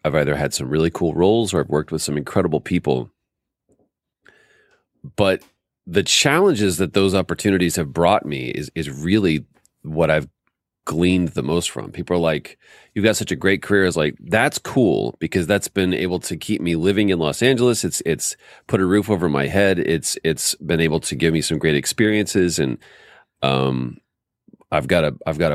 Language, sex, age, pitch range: English, male, 40-59, 80-95 Hz